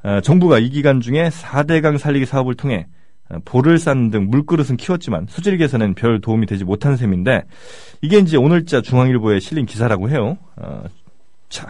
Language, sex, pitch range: Korean, male, 105-160 Hz